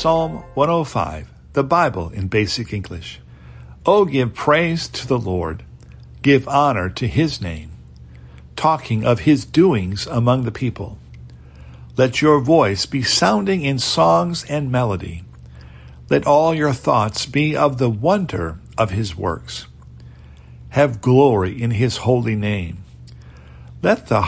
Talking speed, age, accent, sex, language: 135 wpm, 60-79, American, male, English